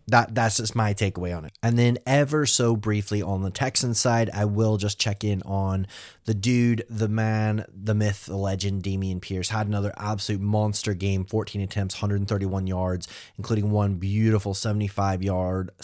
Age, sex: 20-39, male